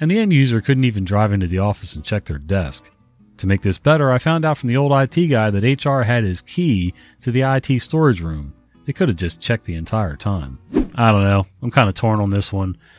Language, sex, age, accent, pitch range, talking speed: English, male, 30-49, American, 90-120 Hz, 250 wpm